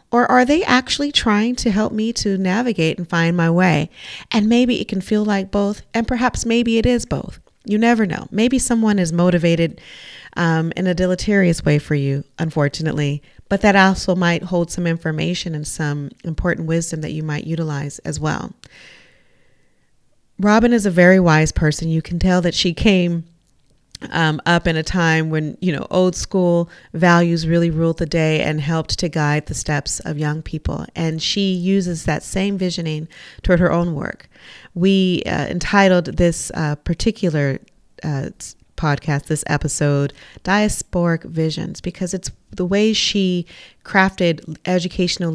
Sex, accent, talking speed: female, American, 165 wpm